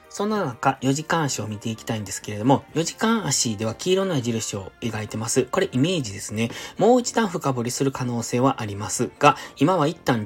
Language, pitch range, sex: Japanese, 115-160 Hz, male